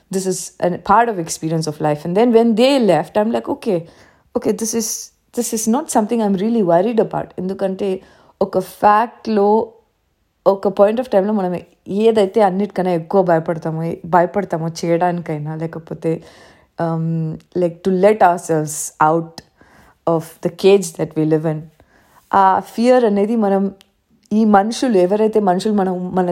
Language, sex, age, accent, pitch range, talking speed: Telugu, female, 20-39, native, 170-215 Hz, 160 wpm